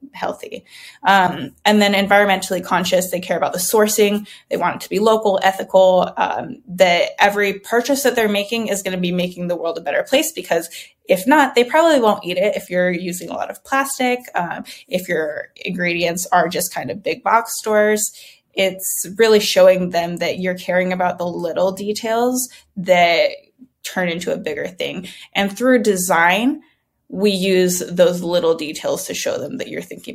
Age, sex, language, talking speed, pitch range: 20-39, female, English, 185 wpm, 180-215 Hz